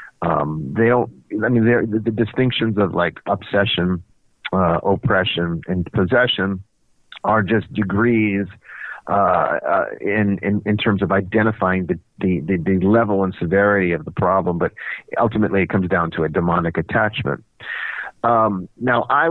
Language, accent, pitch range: English, American, 95-115 Hz